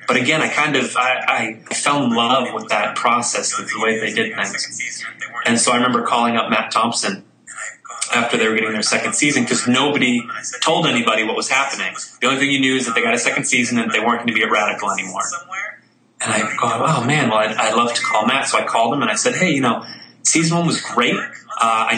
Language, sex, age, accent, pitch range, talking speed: English, male, 20-39, American, 120-175 Hz, 245 wpm